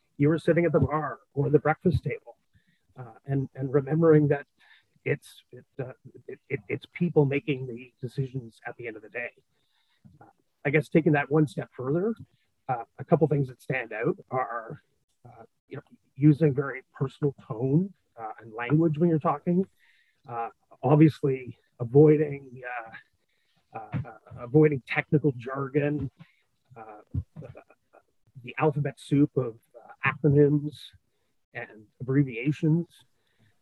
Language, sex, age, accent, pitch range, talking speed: English, male, 30-49, American, 125-155 Hz, 140 wpm